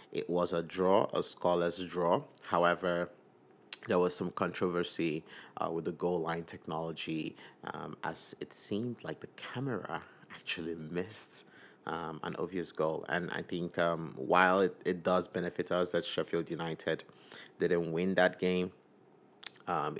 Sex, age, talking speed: male, 30-49, 145 wpm